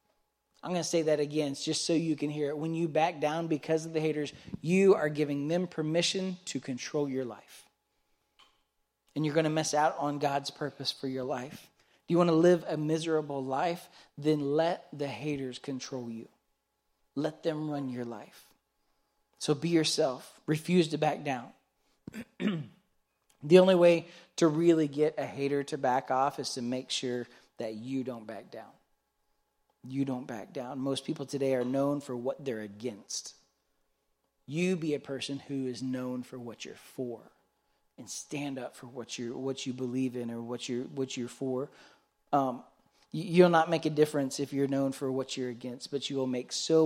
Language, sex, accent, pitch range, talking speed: English, male, American, 130-155 Hz, 185 wpm